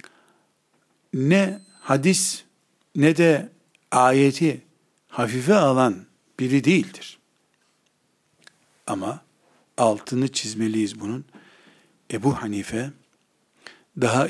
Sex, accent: male, native